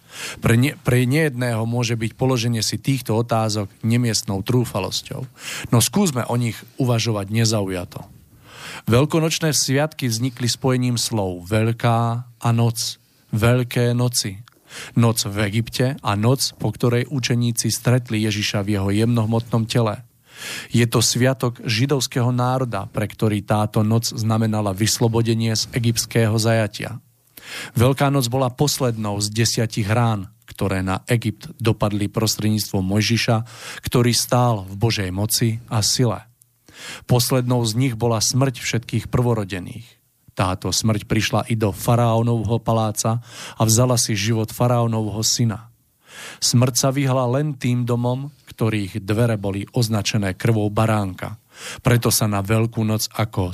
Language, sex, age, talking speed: Slovak, male, 40-59, 125 wpm